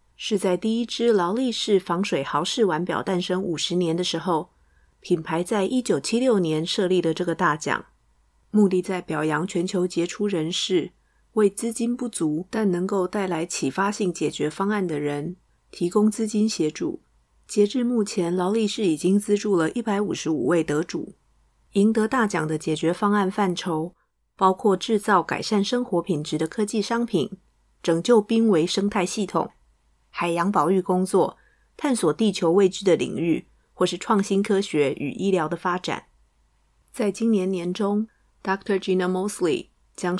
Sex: female